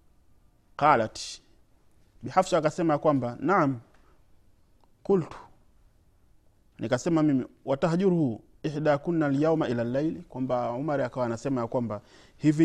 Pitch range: 105-150 Hz